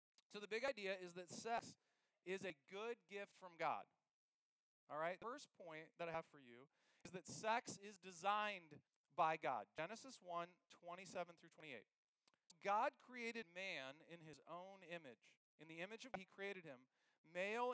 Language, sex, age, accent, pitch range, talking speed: English, male, 40-59, American, 165-230 Hz, 175 wpm